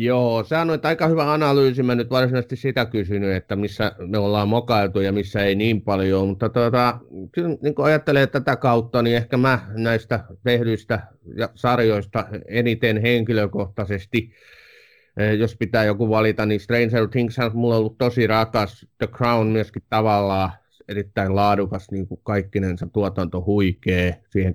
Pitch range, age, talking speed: 100-120 Hz, 30-49, 140 wpm